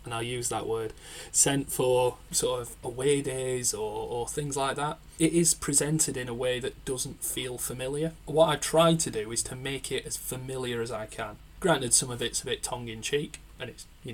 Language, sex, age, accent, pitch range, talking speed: English, male, 20-39, British, 120-140 Hz, 210 wpm